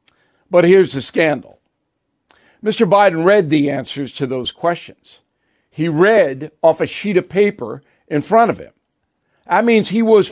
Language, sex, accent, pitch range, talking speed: English, male, American, 150-215 Hz, 155 wpm